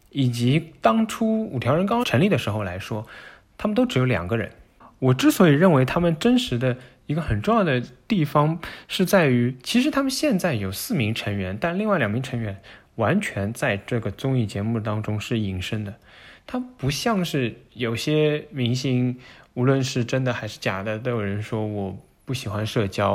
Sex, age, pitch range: male, 20-39, 105-145 Hz